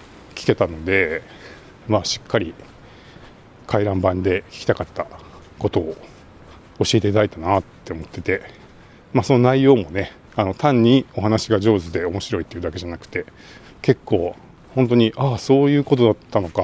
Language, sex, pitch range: Japanese, male, 95-115 Hz